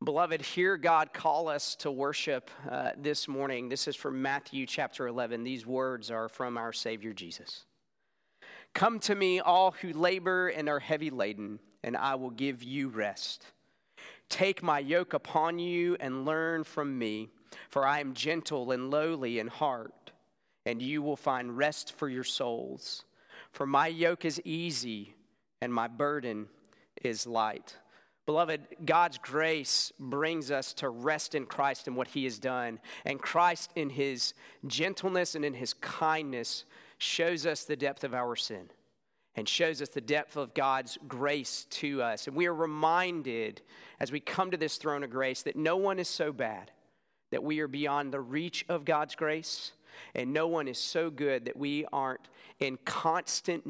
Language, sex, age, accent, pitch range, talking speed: English, male, 40-59, American, 130-160 Hz, 170 wpm